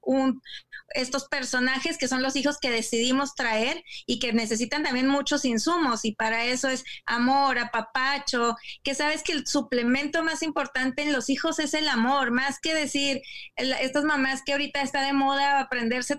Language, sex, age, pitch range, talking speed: English, female, 20-39, 255-295 Hz, 165 wpm